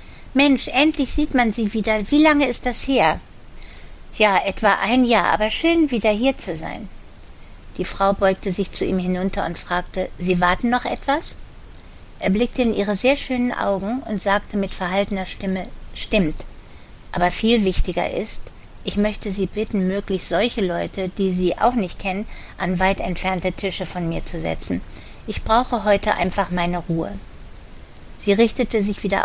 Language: German